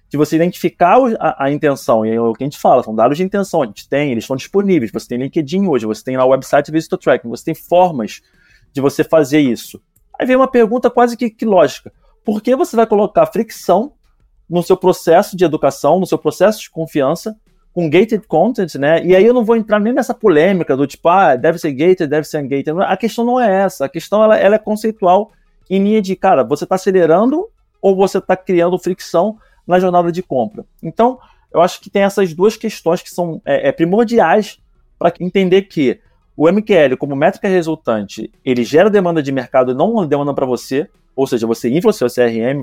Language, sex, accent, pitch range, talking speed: Portuguese, male, Brazilian, 140-195 Hz, 215 wpm